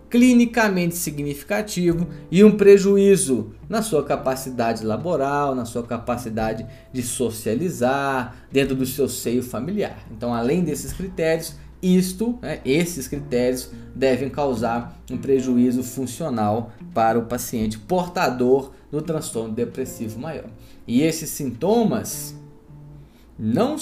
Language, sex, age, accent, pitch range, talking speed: Portuguese, male, 20-39, Brazilian, 125-185 Hz, 110 wpm